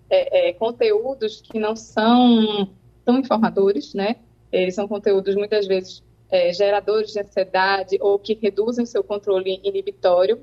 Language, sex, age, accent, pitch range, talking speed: Portuguese, female, 20-39, Brazilian, 195-240 Hz, 140 wpm